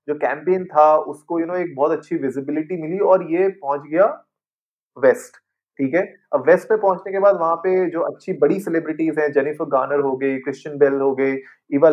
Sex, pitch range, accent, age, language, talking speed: male, 145-210 Hz, native, 30-49, Hindi, 105 wpm